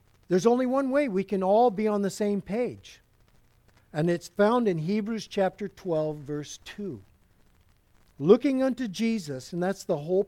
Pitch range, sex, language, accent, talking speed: 155-205 Hz, male, English, American, 165 wpm